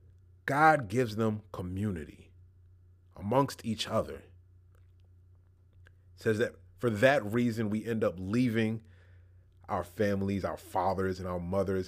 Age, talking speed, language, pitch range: 30-49, 115 wpm, English, 90-120 Hz